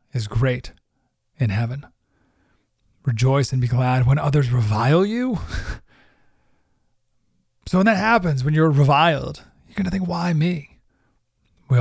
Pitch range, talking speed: 125-180 Hz, 130 wpm